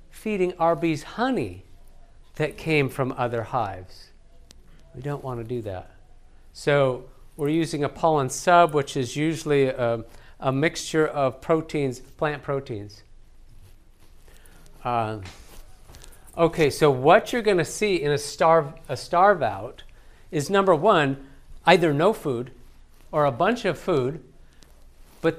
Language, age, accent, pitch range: English, 50-69, American, 115-160 Hz